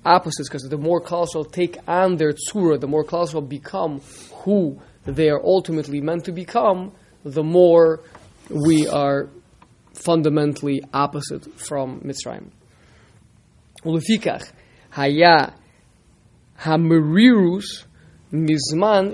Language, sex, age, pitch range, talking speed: English, male, 20-39, 140-175 Hz, 100 wpm